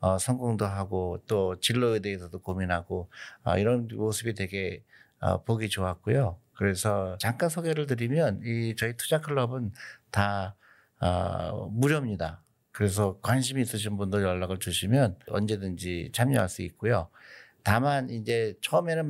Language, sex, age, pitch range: Korean, male, 50-69, 90-120 Hz